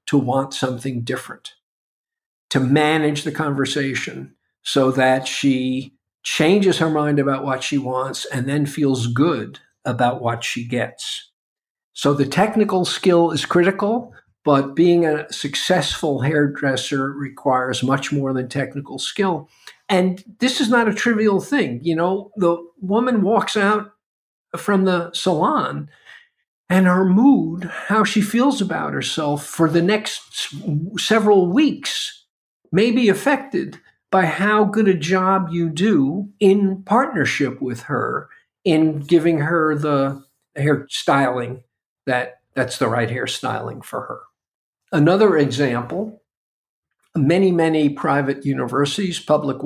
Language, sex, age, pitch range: English, male, 50-69, 135-190 Hz